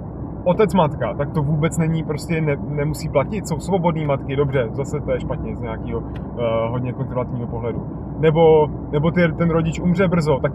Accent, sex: native, male